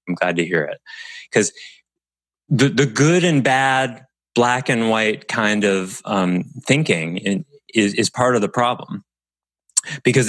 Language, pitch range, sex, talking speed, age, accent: English, 90-140 Hz, male, 145 wpm, 30-49, American